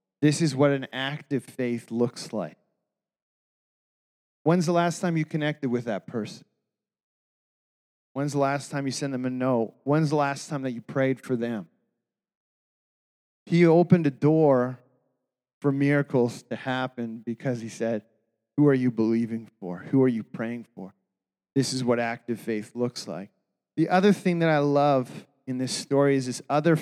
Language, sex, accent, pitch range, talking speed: English, male, American, 125-155 Hz, 170 wpm